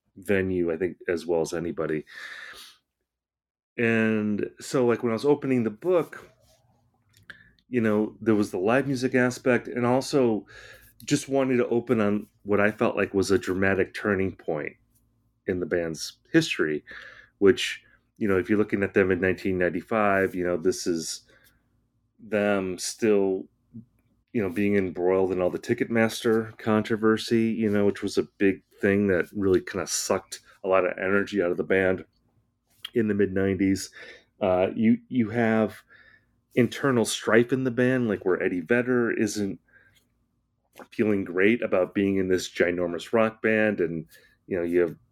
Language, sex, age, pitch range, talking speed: English, male, 30-49, 95-120 Hz, 160 wpm